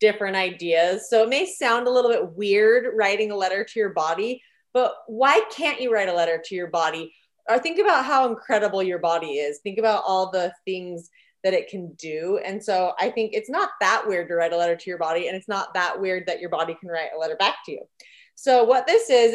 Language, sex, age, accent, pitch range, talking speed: English, female, 20-39, American, 195-250 Hz, 240 wpm